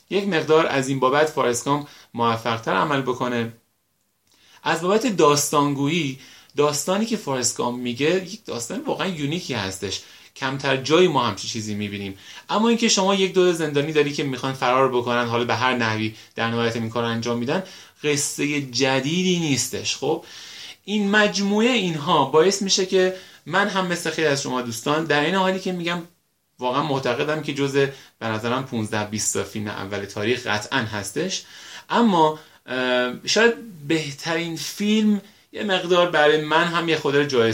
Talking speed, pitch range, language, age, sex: 150 wpm, 120-175 Hz, Persian, 30-49, male